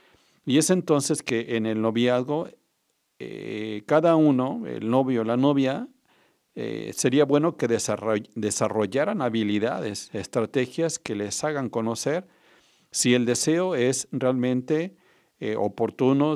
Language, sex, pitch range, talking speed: Spanish, male, 110-150 Hz, 120 wpm